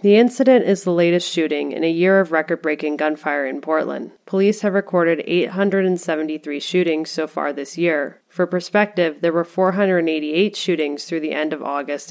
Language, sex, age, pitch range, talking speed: English, female, 30-49, 155-190 Hz, 170 wpm